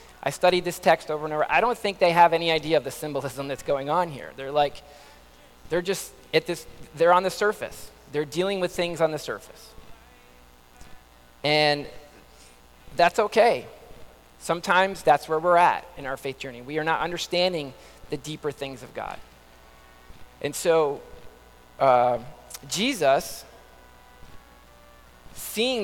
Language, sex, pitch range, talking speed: English, male, 135-180 Hz, 150 wpm